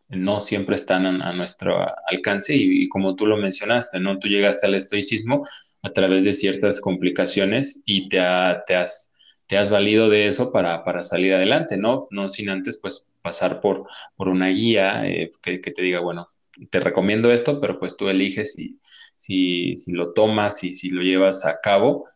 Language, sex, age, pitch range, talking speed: Spanish, male, 20-39, 95-115 Hz, 190 wpm